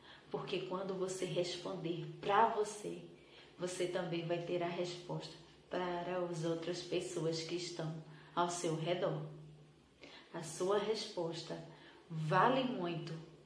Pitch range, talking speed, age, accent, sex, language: 175-230 Hz, 115 wpm, 20-39, Brazilian, female, Portuguese